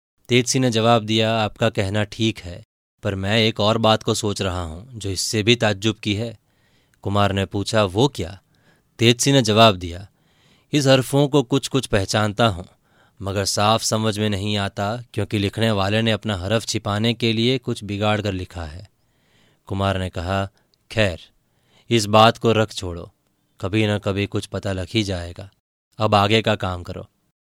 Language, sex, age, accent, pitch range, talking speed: Hindi, male, 20-39, native, 100-115 Hz, 175 wpm